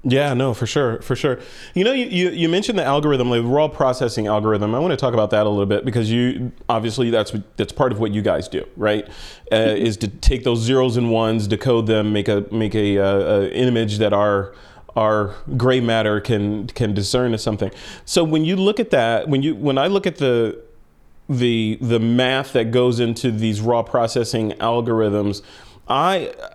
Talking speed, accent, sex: 205 wpm, American, male